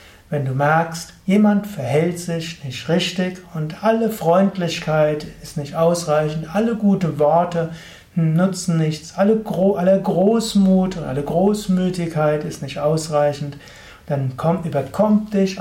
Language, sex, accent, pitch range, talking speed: German, male, German, 145-180 Hz, 120 wpm